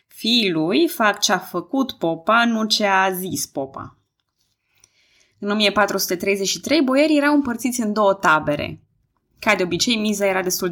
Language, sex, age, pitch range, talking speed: Romanian, female, 20-39, 175-235 Hz, 140 wpm